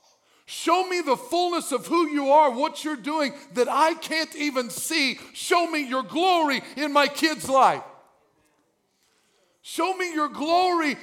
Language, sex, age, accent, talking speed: English, male, 50-69, American, 150 wpm